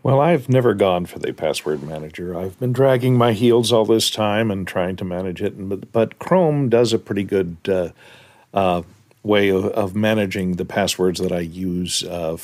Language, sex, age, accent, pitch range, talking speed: English, male, 50-69, American, 95-115 Hz, 195 wpm